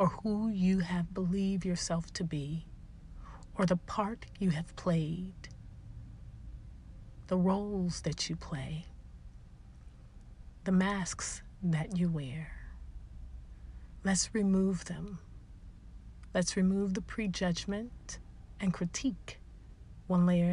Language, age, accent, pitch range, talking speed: English, 40-59, American, 160-190 Hz, 100 wpm